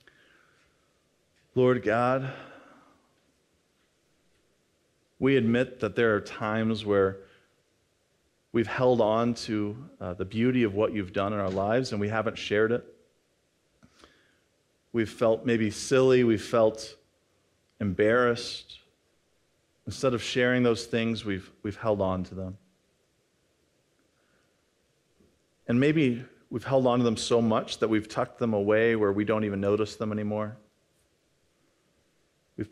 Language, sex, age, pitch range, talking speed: English, male, 40-59, 100-120 Hz, 125 wpm